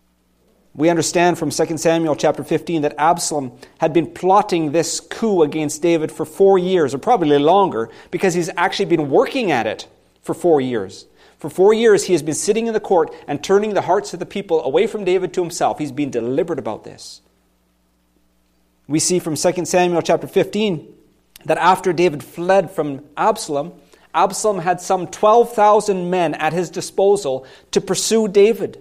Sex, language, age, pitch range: male, English, 30-49, 150-195 Hz